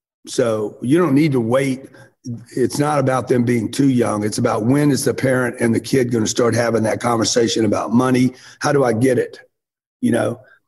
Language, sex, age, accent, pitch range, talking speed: English, male, 40-59, American, 120-150 Hz, 210 wpm